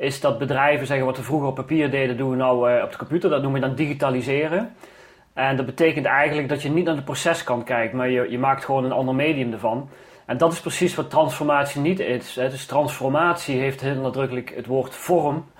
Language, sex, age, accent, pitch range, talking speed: Dutch, male, 30-49, Dutch, 130-155 Hz, 225 wpm